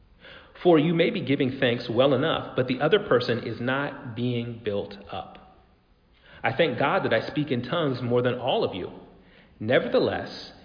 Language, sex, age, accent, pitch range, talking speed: English, male, 40-59, American, 120-160 Hz, 175 wpm